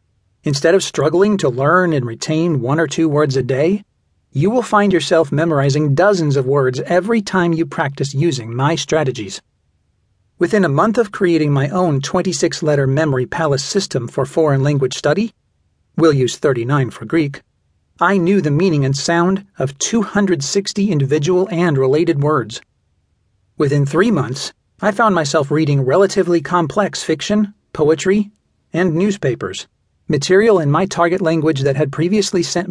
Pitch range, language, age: 135-180 Hz, English, 40-59